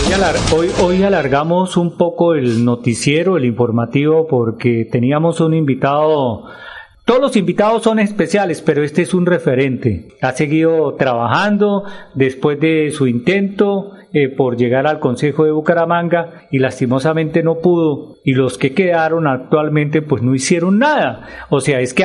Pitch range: 145-185 Hz